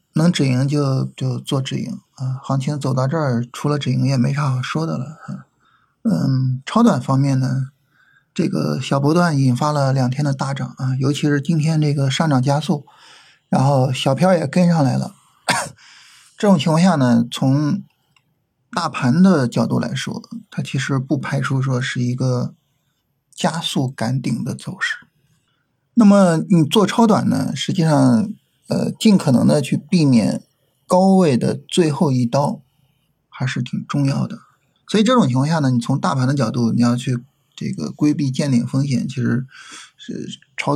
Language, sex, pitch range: Chinese, male, 130-165 Hz